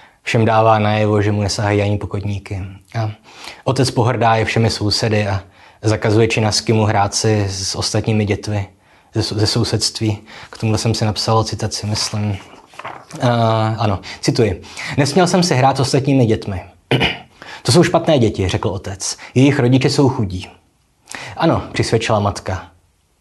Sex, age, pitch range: male, 20-39, 105-120 Hz